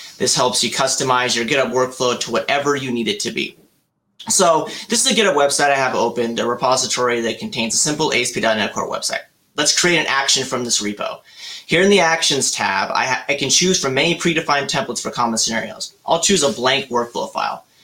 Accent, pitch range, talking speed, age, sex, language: American, 120-160 Hz, 205 wpm, 30-49, male, English